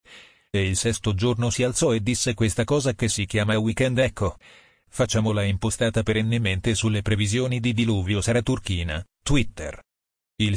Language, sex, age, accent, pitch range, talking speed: Italian, male, 40-59, native, 95-120 Hz, 140 wpm